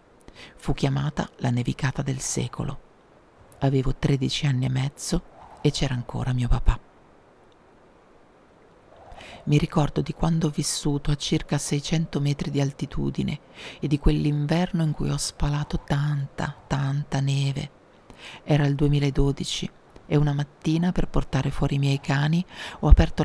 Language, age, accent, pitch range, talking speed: Italian, 40-59, native, 140-160 Hz, 135 wpm